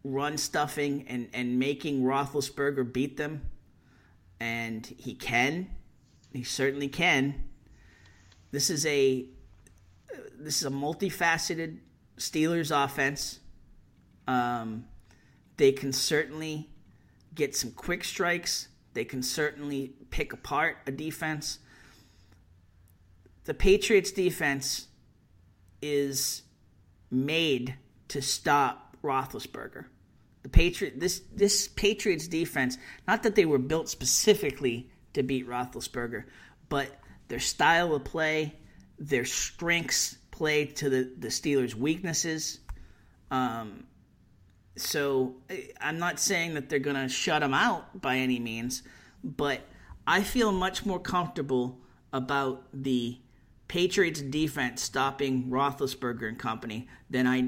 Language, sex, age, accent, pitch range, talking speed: English, male, 40-59, American, 120-155 Hz, 110 wpm